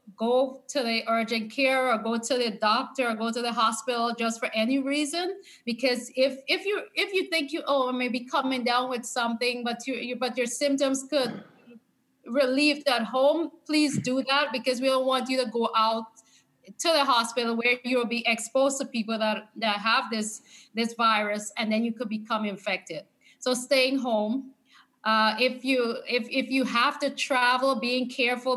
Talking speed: 185 wpm